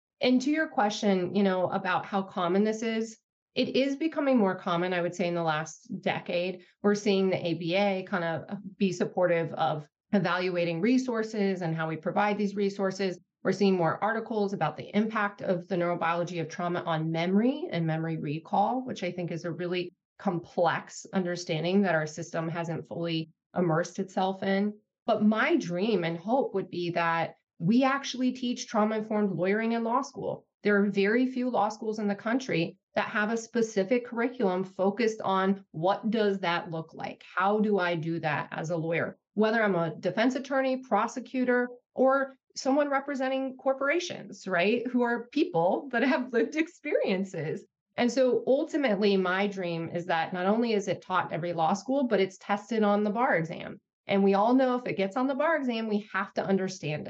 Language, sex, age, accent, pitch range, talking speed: English, female, 30-49, American, 175-230 Hz, 180 wpm